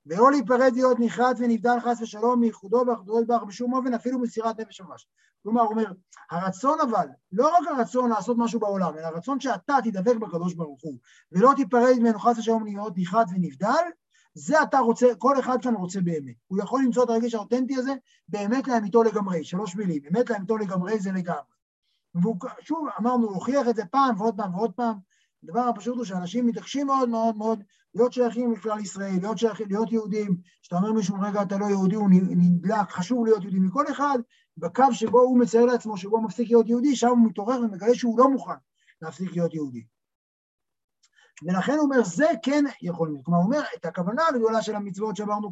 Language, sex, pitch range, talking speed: Hebrew, male, 195-245 Hz, 175 wpm